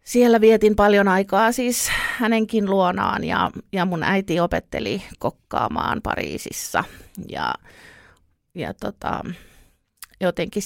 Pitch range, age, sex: 165-200 Hz, 30-49, female